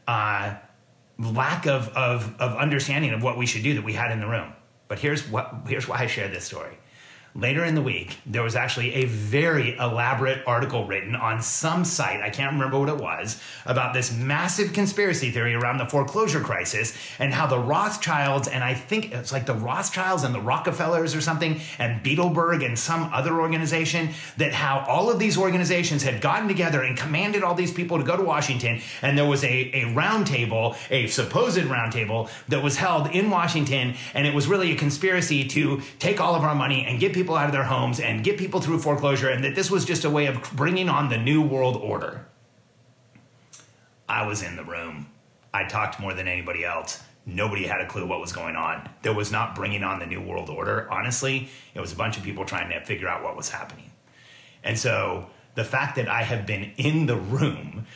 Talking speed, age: 210 wpm, 30-49